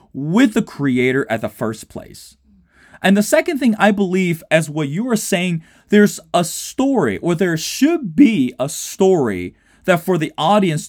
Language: English